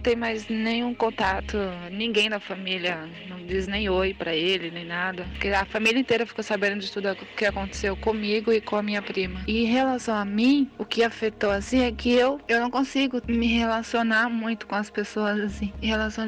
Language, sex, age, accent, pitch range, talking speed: Portuguese, female, 20-39, Brazilian, 205-230 Hz, 205 wpm